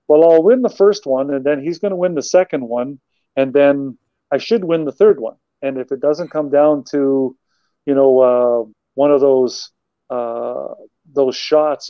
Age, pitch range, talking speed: 40-59, 130-155 Hz, 195 wpm